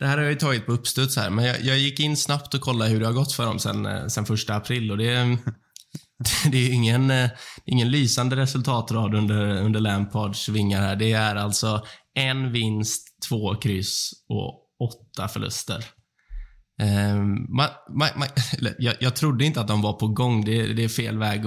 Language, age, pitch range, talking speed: Swedish, 20-39, 105-125 Hz, 195 wpm